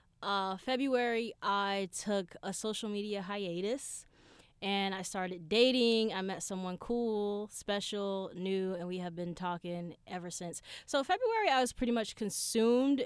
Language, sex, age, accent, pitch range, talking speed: English, female, 20-39, American, 190-240 Hz, 145 wpm